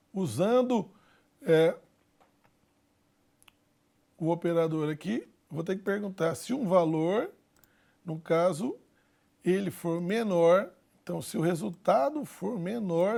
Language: Portuguese